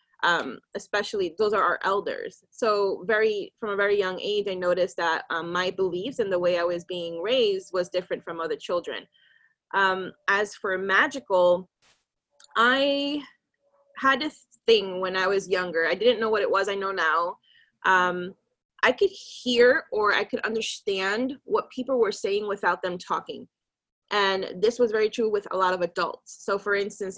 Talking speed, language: 175 wpm, English